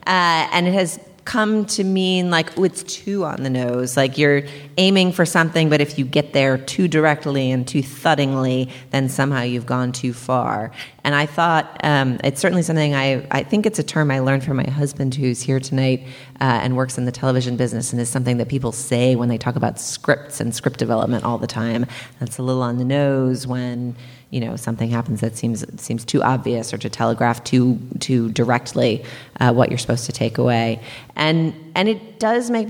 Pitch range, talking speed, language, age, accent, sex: 125-150 Hz, 210 wpm, English, 30-49, American, female